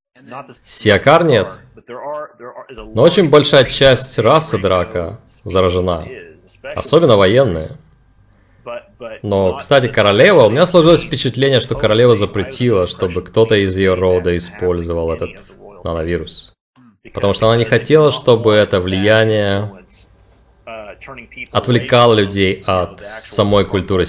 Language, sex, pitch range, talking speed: Russian, male, 90-125 Hz, 105 wpm